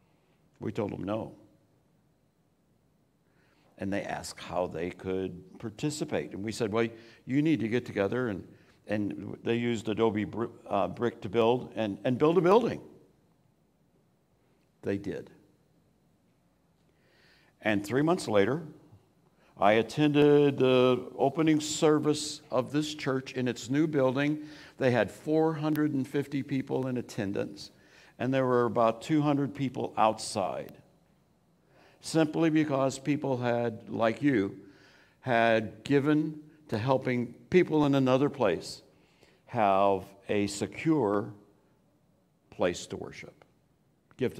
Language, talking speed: English, 115 wpm